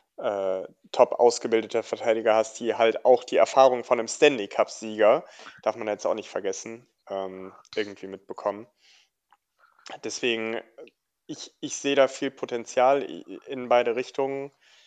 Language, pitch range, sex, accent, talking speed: German, 115-140 Hz, male, German, 135 wpm